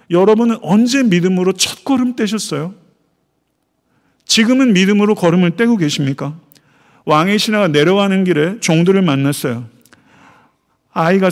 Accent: native